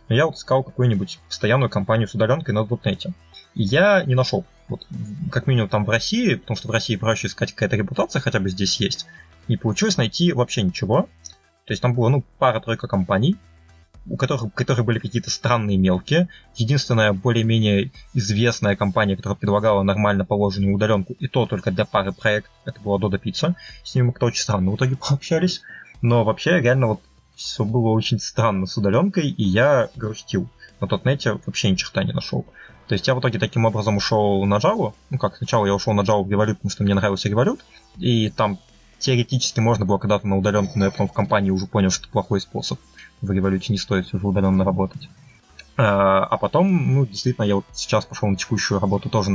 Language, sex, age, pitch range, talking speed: Russian, male, 20-39, 100-125 Hz, 195 wpm